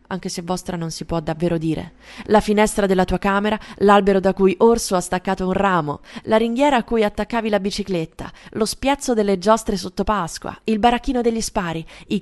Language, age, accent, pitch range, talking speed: Italian, 20-39, native, 180-220 Hz, 190 wpm